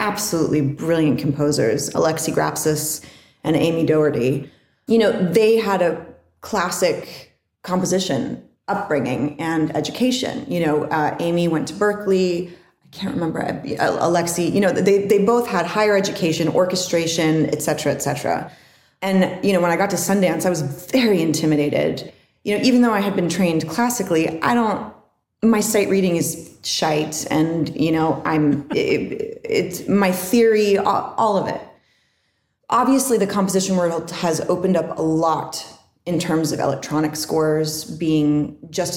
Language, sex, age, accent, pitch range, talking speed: English, female, 30-49, American, 155-195 Hz, 150 wpm